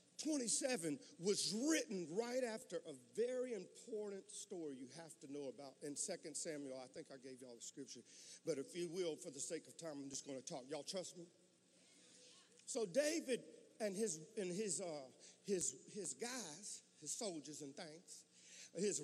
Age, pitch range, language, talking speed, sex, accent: 50-69, 155-240 Hz, English, 175 wpm, male, American